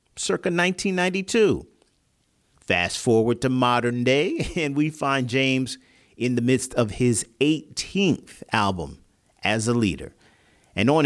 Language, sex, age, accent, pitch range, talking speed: English, male, 50-69, American, 105-140 Hz, 125 wpm